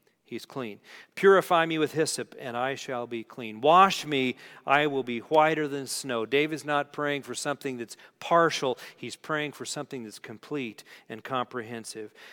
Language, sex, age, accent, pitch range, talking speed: English, male, 40-59, American, 125-170 Hz, 165 wpm